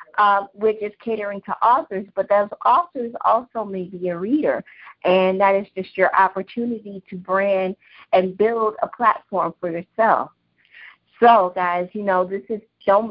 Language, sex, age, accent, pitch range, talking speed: English, female, 50-69, American, 180-205 Hz, 160 wpm